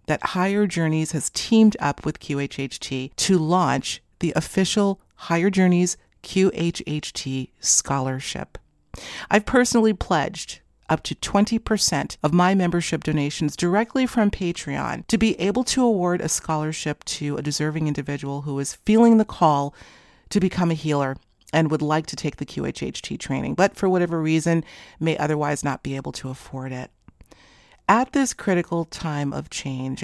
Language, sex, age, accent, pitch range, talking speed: English, female, 40-59, American, 145-185 Hz, 150 wpm